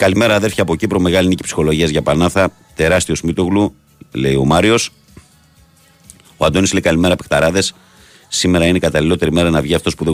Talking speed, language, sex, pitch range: 170 wpm, Greek, male, 75-95 Hz